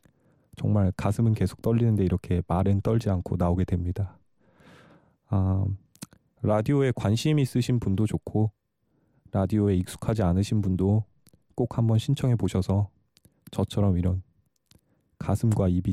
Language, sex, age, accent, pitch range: Korean, male, 20-39, native, 95-115 Hz